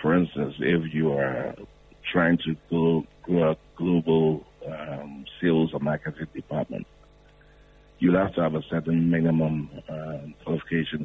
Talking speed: 135 wpm